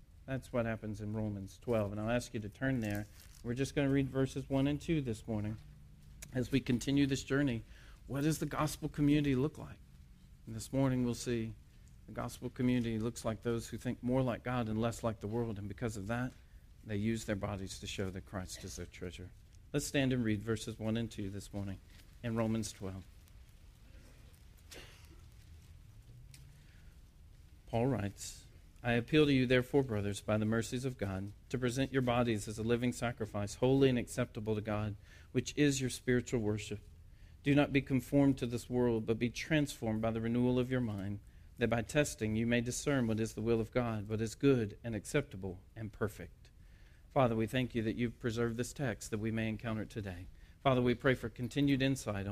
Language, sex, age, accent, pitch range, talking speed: English, male, 40-59, American, 100-125 Hz, 195 wpm